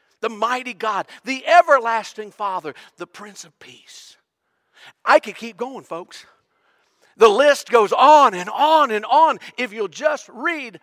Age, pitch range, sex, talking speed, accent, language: 50-69, 165-255 Hz, male, 150 wpm, American, English